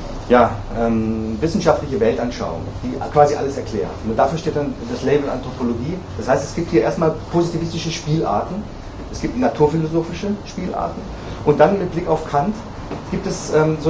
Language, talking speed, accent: German, 160 wpm, German